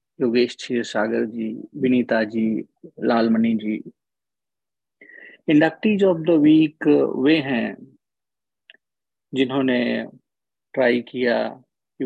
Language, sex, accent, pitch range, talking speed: Hindi, male, native, 115-135 Hz, 90 wpm